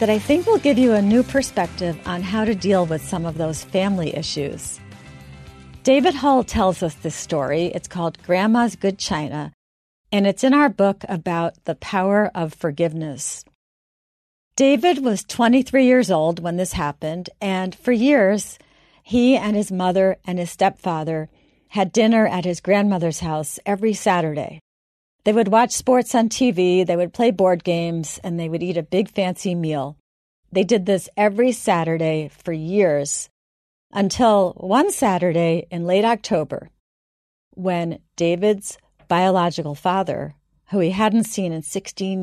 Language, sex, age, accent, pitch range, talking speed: English, female, 40-59, American, 160-205 Hz, 155 wpm